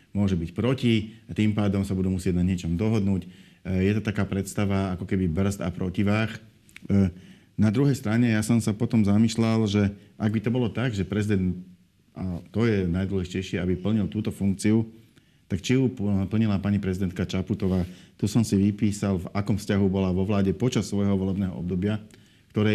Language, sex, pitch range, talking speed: Slovak, male, 95-110 Hz, 175 wpm